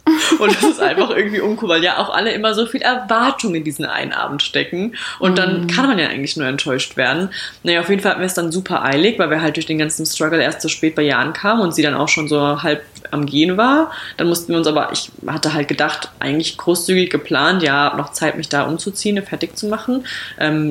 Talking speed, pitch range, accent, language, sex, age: 240 wpm, 155-200 Hz, German, German, female, 20-39